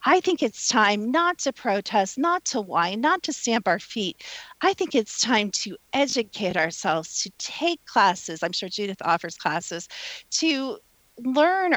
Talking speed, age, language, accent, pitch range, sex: 165 wpm, 40-59, English, American, 195-300 Hz, female